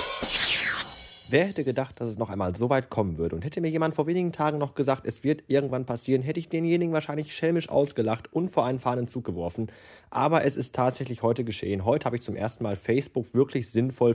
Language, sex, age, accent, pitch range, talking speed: German, male, 20-39, German, 105-140 Hz, 210 wpm